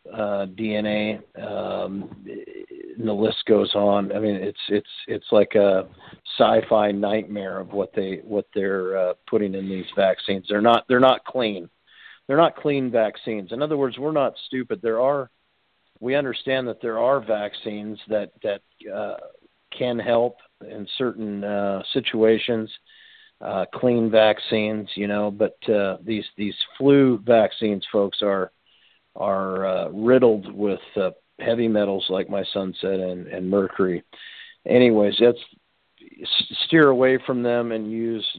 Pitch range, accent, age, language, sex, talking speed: 100-115 Hz, American, 50-69, English, male, 145 wpm